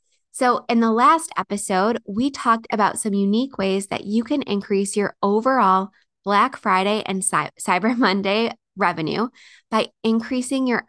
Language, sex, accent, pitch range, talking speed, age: English, female, American, 195-235 Hz, 145 wpm, 20-39